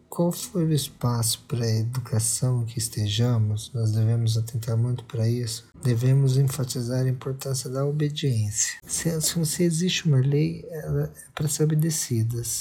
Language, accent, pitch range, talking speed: Portuguese, Brazilian, 120-150 Hz, 150 wpm